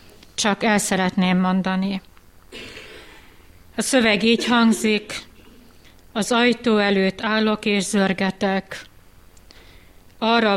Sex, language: female, Hungarian